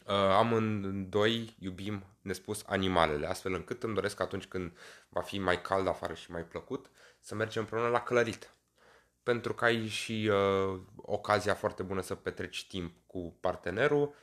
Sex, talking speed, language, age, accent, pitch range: male, 165 wpm, Romanian, 20-39, native, 90-105 Hz